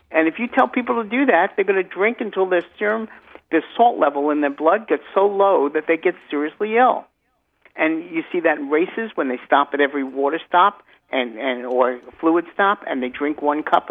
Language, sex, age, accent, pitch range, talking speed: English, male, 50-69, American, 135-190 Hz, 225 wpm